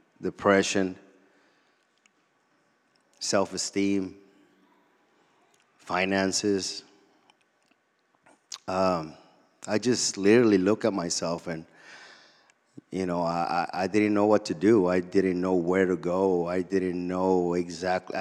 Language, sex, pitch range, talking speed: English, male, 90-95 Hz, 100 wpm